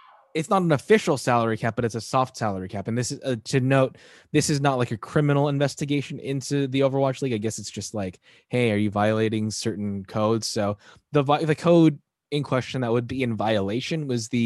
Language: English